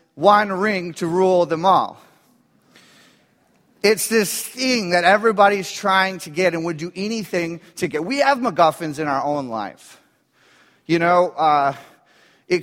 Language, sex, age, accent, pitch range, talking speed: English, male, 30-49, American, 160-195 Hz, 145 wpm